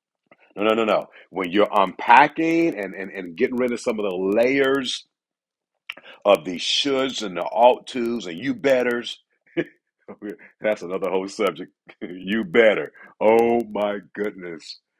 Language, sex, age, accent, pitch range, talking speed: English, male, 50-69, American, 100-130 Hz, 145 wpm